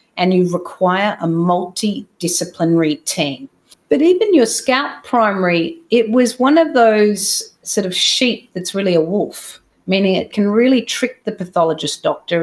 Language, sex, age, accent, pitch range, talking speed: English, female, 40-59, Australian, 170-220 Hz, 150 wpm